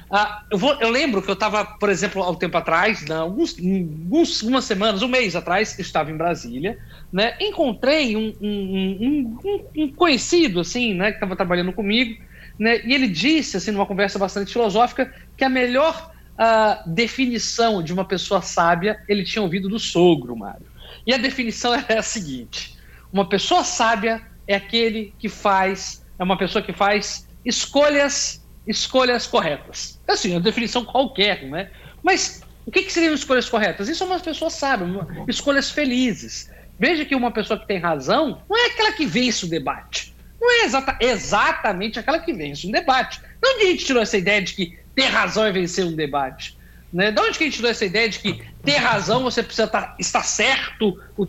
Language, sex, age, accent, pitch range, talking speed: Portuguese, male, 60-79, Brazilian, 190-255 Hz, 185 wpm